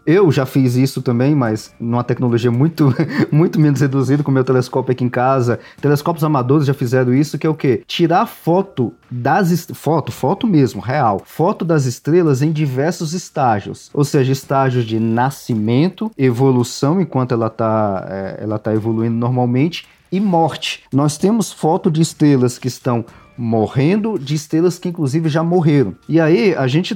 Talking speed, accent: 165 wpm, Brazilian